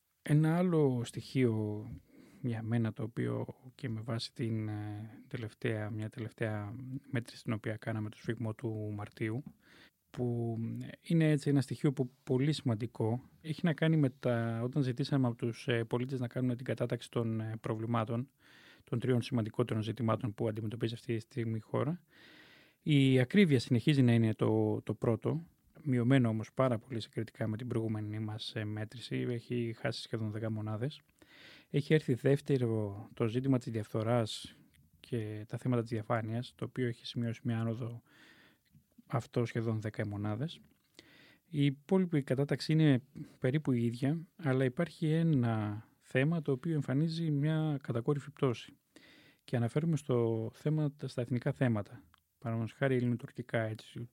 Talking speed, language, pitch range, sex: 145 wpm, Greek, 115-140 Hz, male